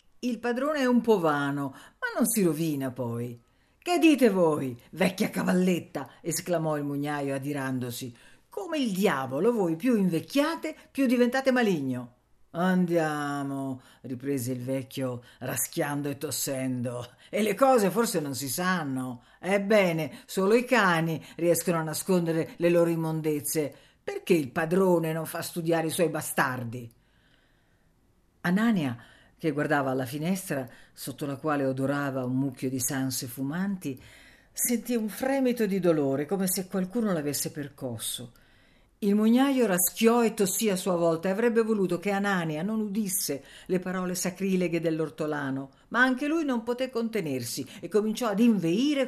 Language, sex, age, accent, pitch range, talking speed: Italian, female, 50-69, native, 135-215 Hz, 140 wpm